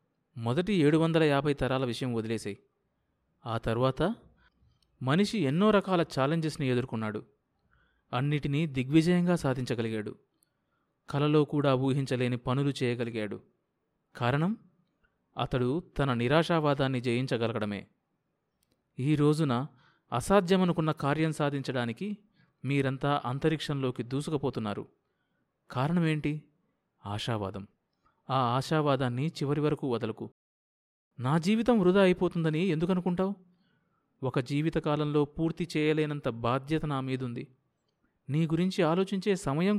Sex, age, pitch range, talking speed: male, 30-49, 130-165 Hz, 85 wpm